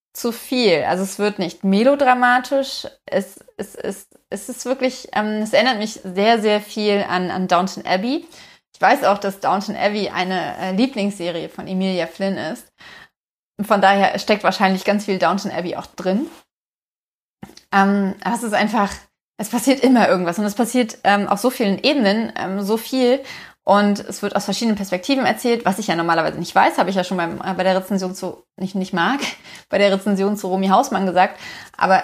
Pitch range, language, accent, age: 190-240 Hz, German, German, 20-39